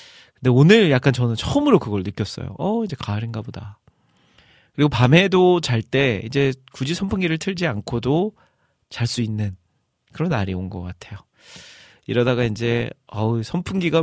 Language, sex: Korean, male